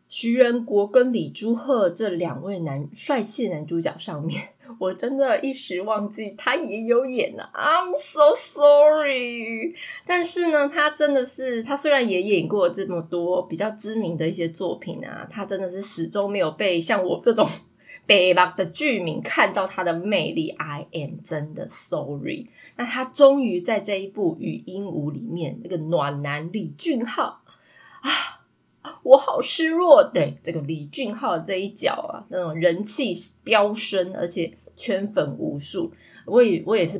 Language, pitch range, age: Chinese, 180-265 Hz, 20-39